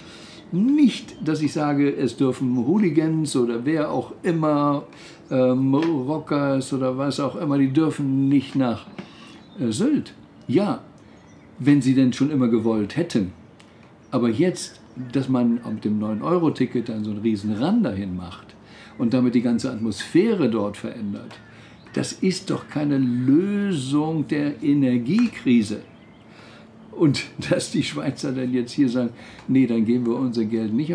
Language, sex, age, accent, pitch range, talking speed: German, male, 60-79, German, 115-140 Hz, 145 wpm